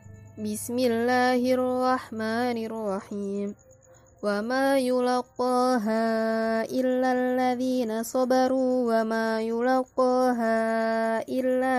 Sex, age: female, 20-39